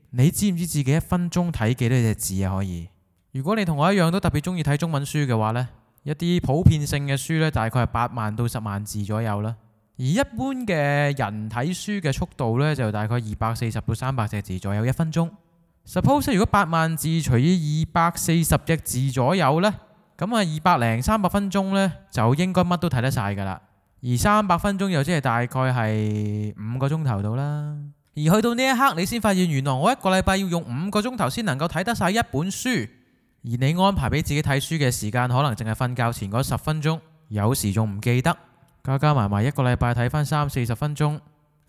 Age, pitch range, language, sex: 20-39, 115-165 Hz, Chinese, male